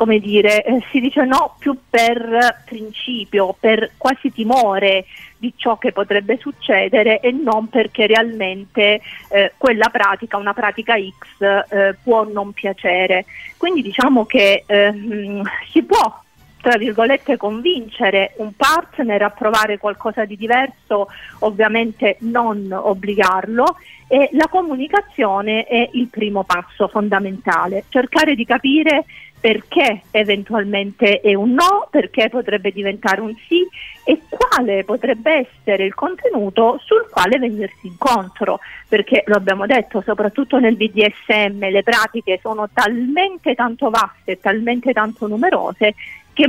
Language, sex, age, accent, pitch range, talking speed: Italian, female, 40-59, native, 205-260 Hz, 125 wpm